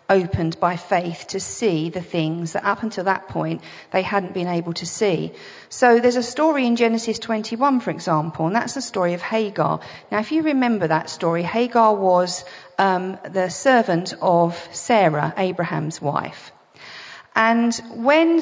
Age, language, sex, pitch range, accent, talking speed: 40-59, English, female, 175-225 Hz, British, 165 wpm